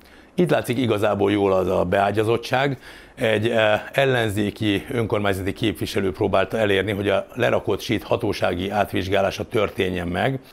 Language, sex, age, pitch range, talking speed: Hungarian, male, 60-79, 95-120 Hz, 120 wpm